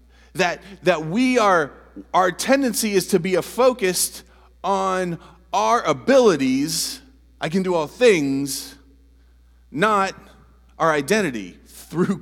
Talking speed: 115 wpm